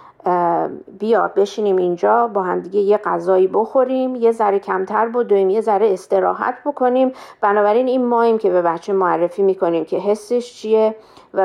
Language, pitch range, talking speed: Persian, 185-220 Hz, 150 wpm